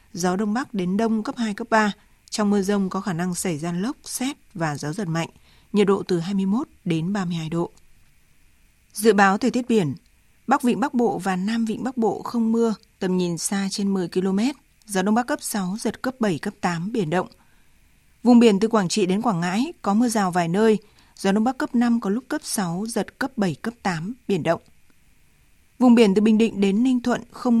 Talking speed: 220 wpm